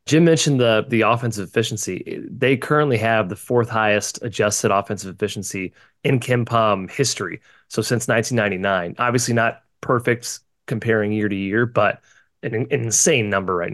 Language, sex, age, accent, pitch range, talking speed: English, male, 20-39, American, 105-130 Hz, 145 wpm